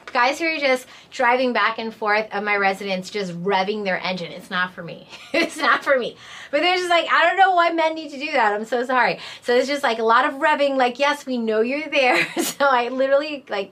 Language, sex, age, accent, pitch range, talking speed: English, female, 20-39, American, 205-260 Hz, 250 wpm